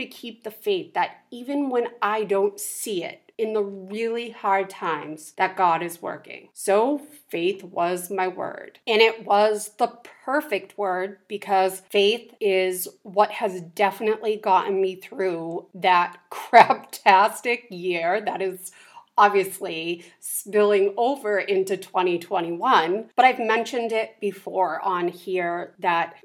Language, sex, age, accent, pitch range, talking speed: English, female, 30-49, American, 180-225 Hz, 135 wpm